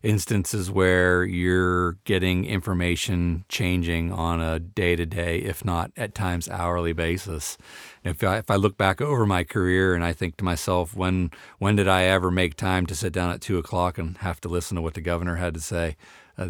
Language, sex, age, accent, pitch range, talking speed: English, male, 40-59, American, 85-100 Hz, 200 wpm